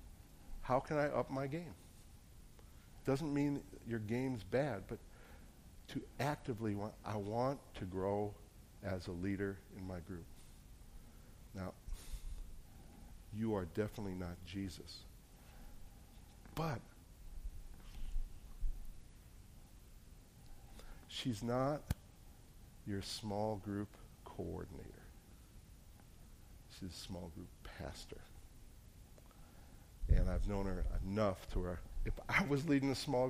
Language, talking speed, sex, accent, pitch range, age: English, 105 wpm, male, American, 90-125 Hz, 60-79